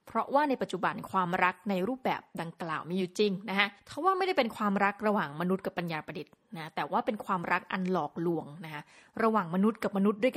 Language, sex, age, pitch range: Thai, female, 20-39, 180-230 Hz